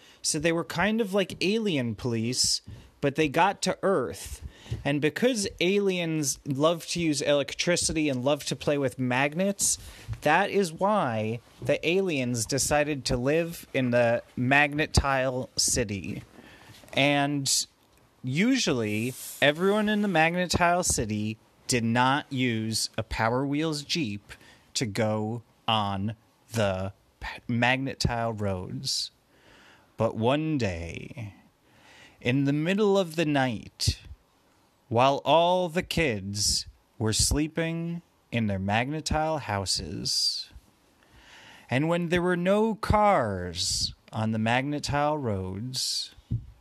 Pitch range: 110-160 Hz